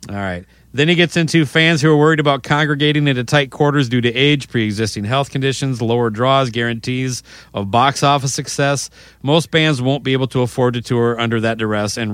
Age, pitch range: 40-59, 110-140 Hz